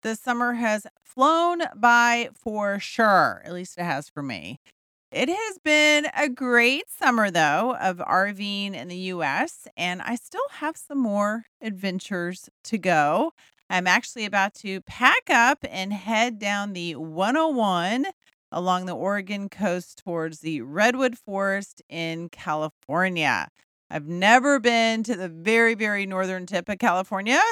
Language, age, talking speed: English, 40-59, 145 wpm